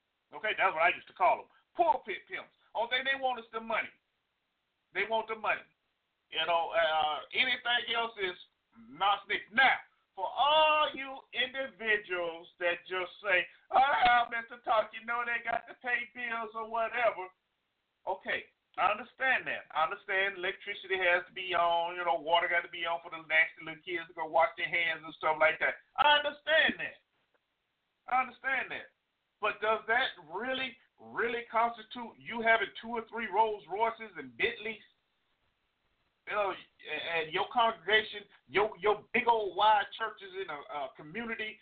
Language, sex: English, male